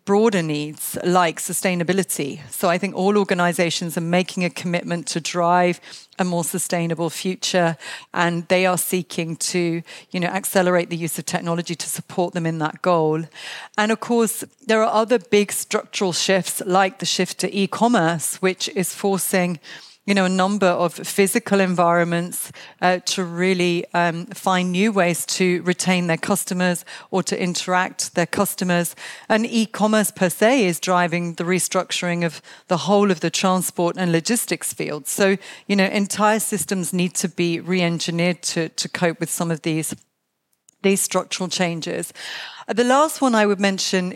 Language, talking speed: English, 160 wpm